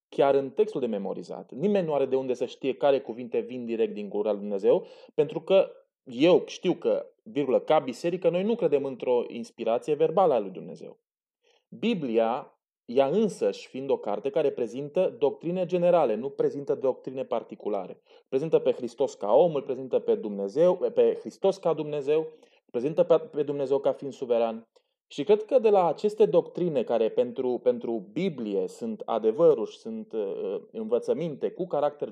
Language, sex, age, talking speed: Romanian, male, 20-39, 165 wpm